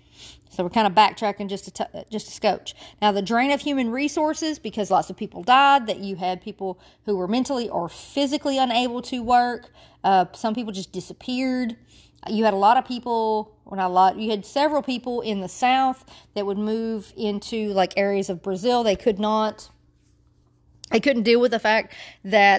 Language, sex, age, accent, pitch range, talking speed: English, female, 40-59, American, 185-225 Hz, 195 wpm